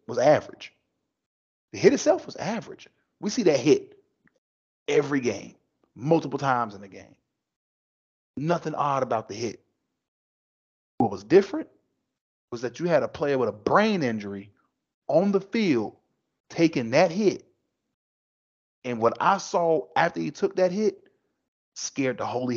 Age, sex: 30-49, male